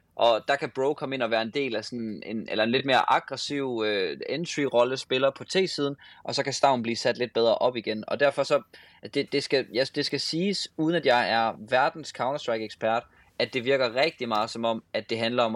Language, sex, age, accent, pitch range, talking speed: Danish, male, 20-39, native, 110-140 Hz, 230 wpm